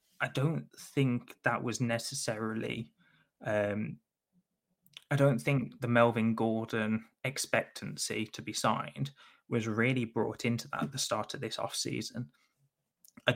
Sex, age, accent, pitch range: male, 20-39, British, 110-135 Hz